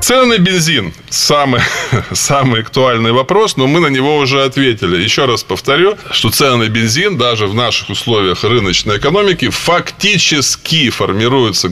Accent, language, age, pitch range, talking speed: native, Russian, 20-39, 100-140 Hz, 150 wpm